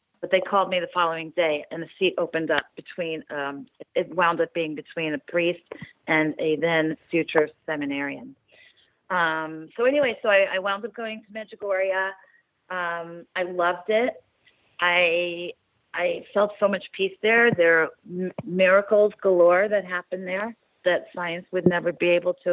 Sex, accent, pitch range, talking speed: female, American, 165-190 Hz, 170 wpm